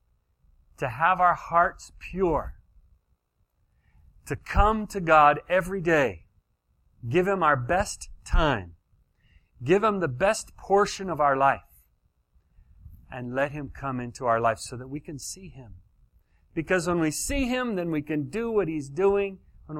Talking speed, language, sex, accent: 150 wpm, English, male, American